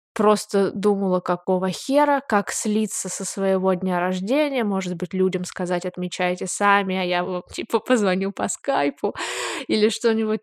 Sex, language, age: female, Russian, 20-39